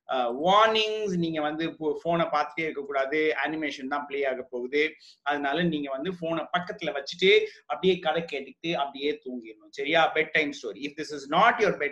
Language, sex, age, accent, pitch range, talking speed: Tamil, male, 30-49, native, 155-215 Hz, 95 wpm